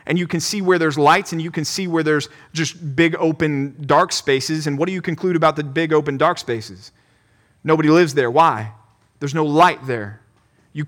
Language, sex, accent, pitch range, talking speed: English, male, American, 145-175 Hz, 210 wpm